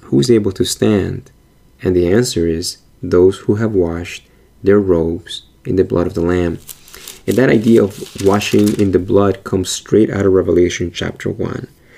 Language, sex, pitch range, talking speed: English, male, 95-120 Hz, 180 wpm